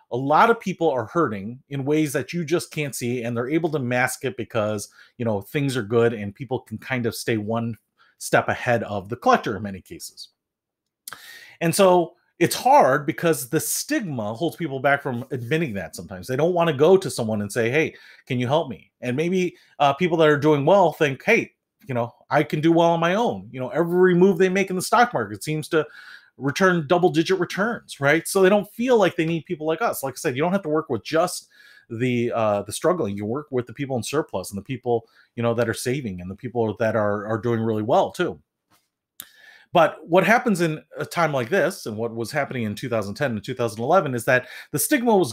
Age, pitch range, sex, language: 30-49, 120-165 Hz, male, English